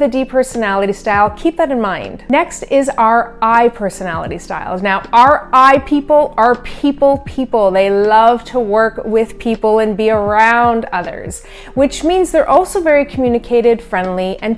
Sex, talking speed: female, 160 wpm